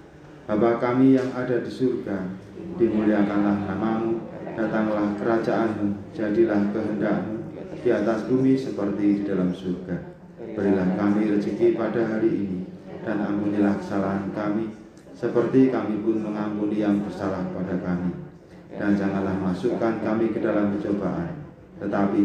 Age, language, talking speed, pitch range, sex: 30-49, Indonesian, 120 wpm, 95-115 Hz, male